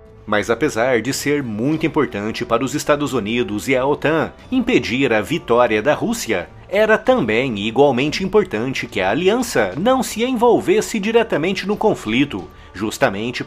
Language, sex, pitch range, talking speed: English, male, 115-190 Hz, 145 wpm